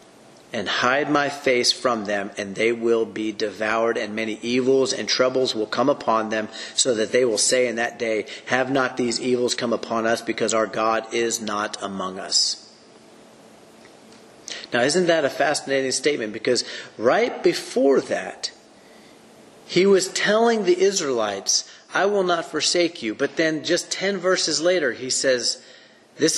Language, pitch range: English, 120-155 Hz